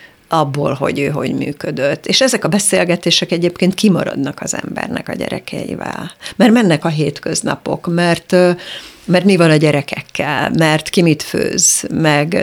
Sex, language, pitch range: female, Hungarian, 160-215 Hz